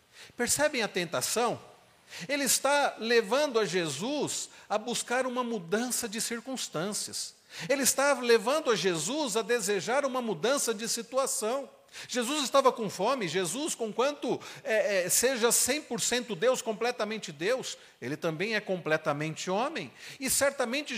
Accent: Brazilian